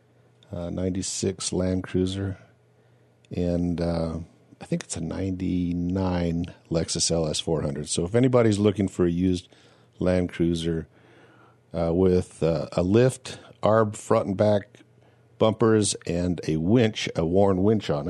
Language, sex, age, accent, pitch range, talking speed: English, male, 50-69, American, 90-120 Hz, 135 wpm